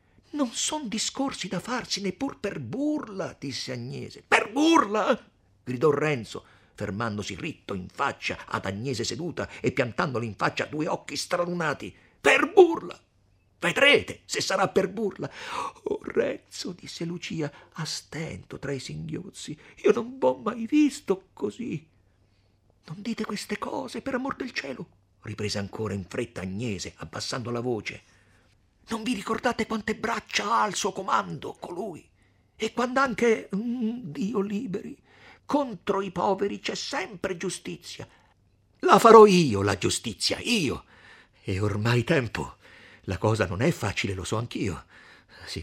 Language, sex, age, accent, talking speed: Italian, male, 50-69, native, 140 wpm